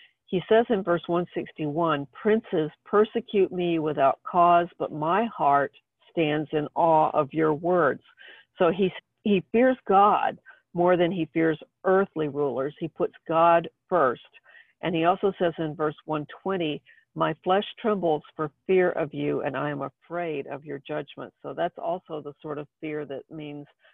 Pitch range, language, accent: 150-180 Hz, English, American